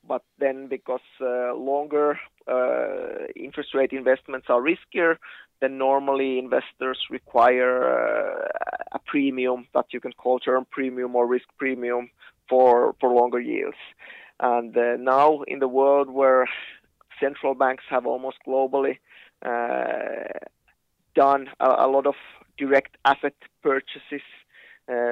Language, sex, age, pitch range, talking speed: Danish, male, 20-39, 125-140 Hz, 125 wpm